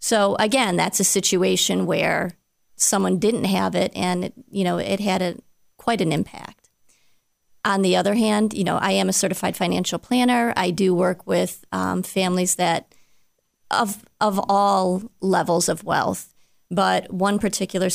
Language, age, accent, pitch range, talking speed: English, 30-49, American, 180-210 Hz, 160 wpm